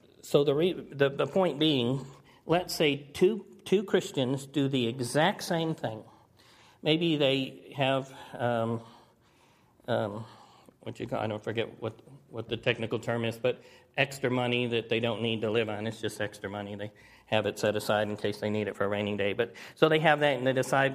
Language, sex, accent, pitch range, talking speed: English, male, American, 120-150 Hz, 195 wpm